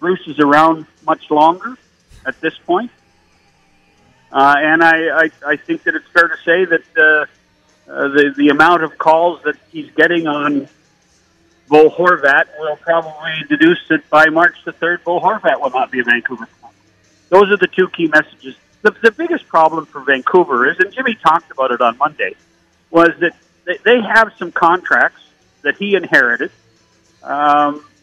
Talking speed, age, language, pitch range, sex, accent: 170 wpm, 50-69, English, 155-205 Hz, male, American